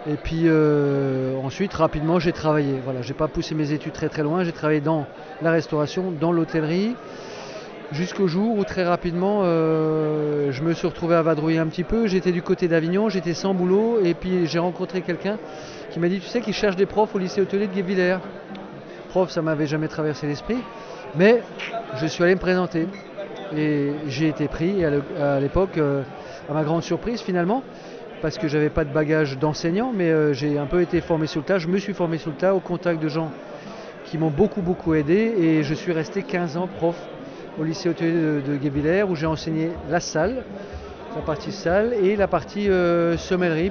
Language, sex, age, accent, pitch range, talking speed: French, male, 40-59, French, 155-185 Hz, 205 wpm